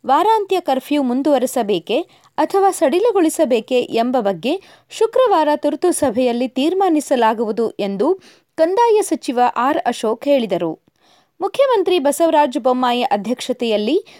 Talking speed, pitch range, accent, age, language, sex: 85 wpm, 245-360 Hz, native, 20-39, Kannada, female